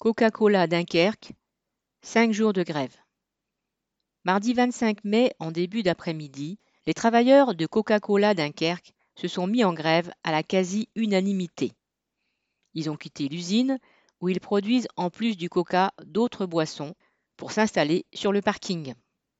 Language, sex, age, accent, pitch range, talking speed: French, female, 40-59, French, 165-220 Hz, 135 wpm